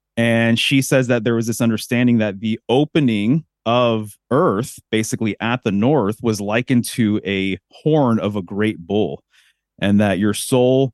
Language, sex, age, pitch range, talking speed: English, male, 30-49, 105-120 Hz, 165 wpm